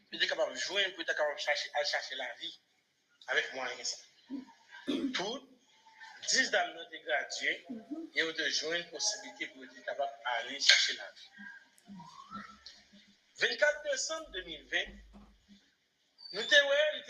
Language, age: English, 50-69